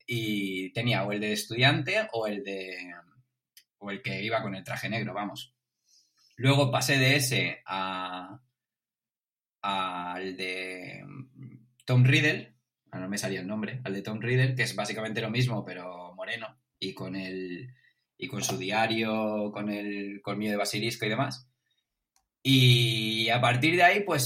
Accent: Spanish